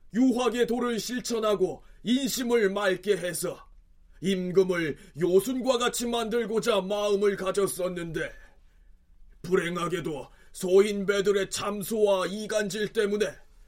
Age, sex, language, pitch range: 30-49, male, Korean, 185-235 Hz